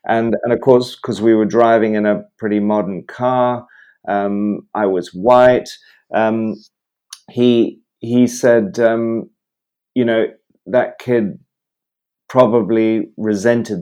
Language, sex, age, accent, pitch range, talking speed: English, male, 40-59, British, 105-115 Hz, 120 wpm